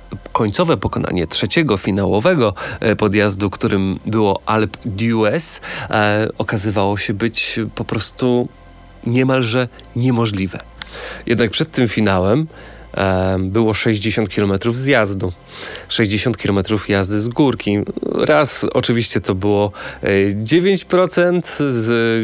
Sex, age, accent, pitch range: male, 30-49, native, 100-120 Hz